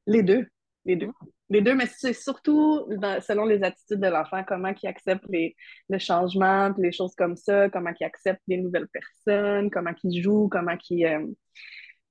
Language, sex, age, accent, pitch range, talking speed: French, female, 20-39, Canadian, 180-205 Hz, 185 wpm